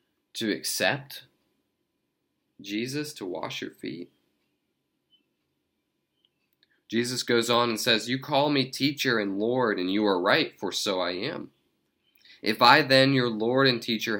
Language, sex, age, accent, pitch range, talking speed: English, male, 20-39, American, 95-125 Hz, 140 wpm